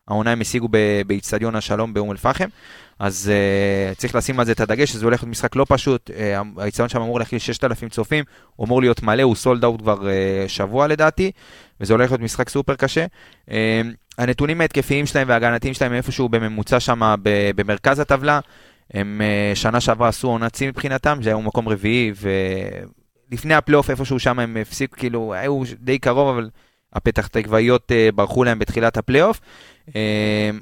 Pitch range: 105-130 Hz